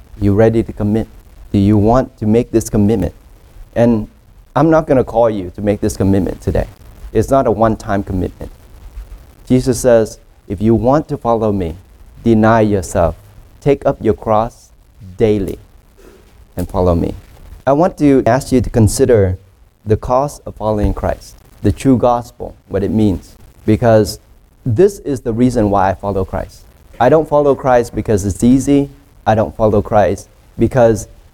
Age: 30-49